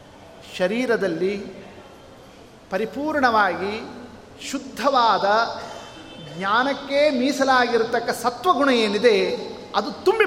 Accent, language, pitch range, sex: native, Kannada, 215-270 Hz, male